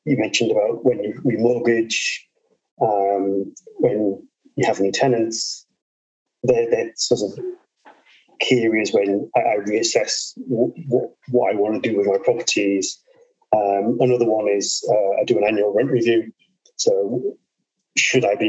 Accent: British